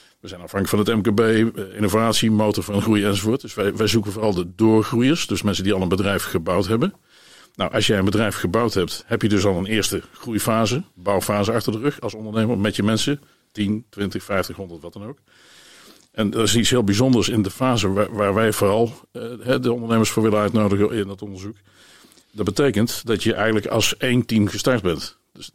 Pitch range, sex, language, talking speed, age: 100-115 Hz, male, Dutch, 205 wpm, 50-69